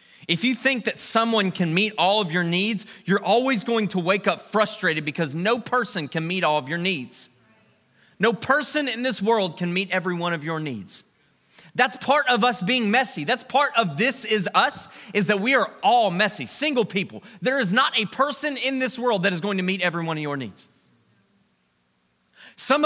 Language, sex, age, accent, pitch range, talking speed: English, male, 30-49, American, 160-250 Hz, 205 wpm